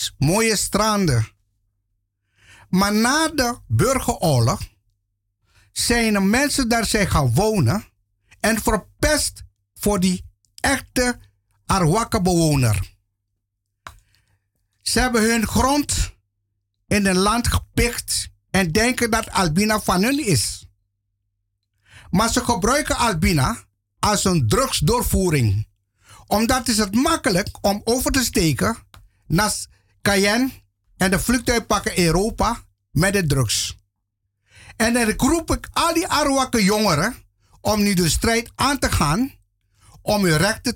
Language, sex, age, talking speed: Dutch, male, 50-69, 115 wpm